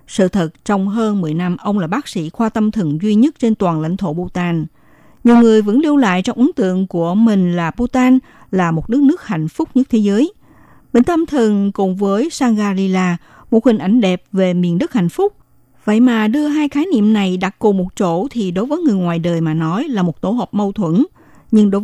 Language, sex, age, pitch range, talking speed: Vietnamese, female, 60-79, 175-235 Hz, 230 wpm